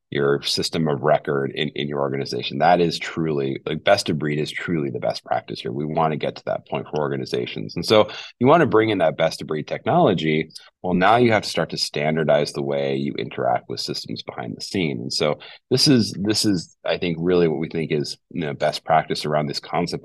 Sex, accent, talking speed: male, American, 235 wpm